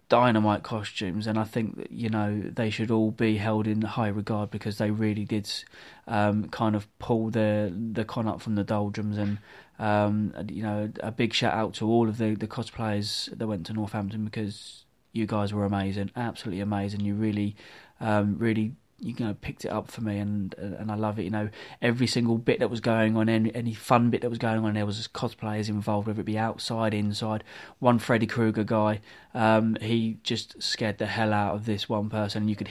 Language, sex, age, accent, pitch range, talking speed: English, male, 20-39, British, 105-120 Hz, 210 wpm